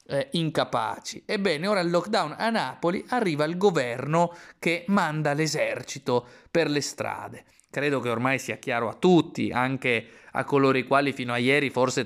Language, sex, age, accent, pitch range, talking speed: Italian, male, 30-49, native, 135-170 Hz, 165 wpm